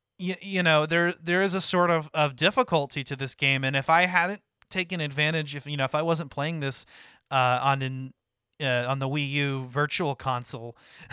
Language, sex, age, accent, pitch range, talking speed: English, male, 20-39, American, 130-160 Hz, 200 wpm